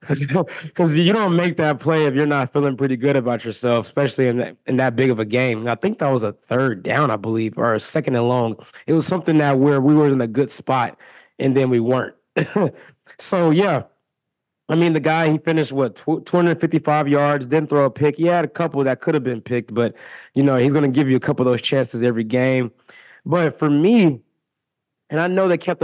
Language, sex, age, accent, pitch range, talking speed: English, male, 20-39, American, 125-155 Hz, 230 wpm